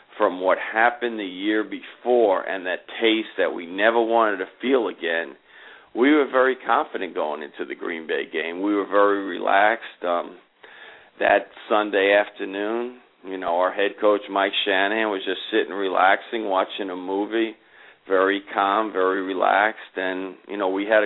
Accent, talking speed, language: American, 160 wpm, English